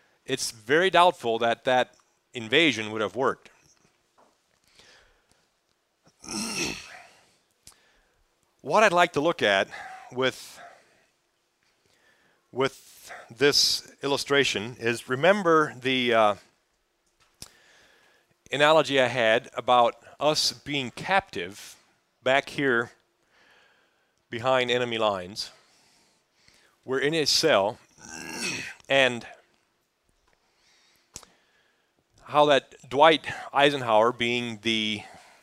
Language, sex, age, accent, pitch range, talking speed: English, male, 40-59, American, 115-150 Hz, 80 wpm